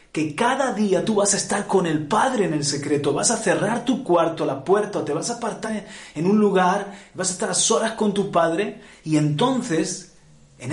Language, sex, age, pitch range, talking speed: Spanish, male, 30-49, 140-195 Hz, 220 wpm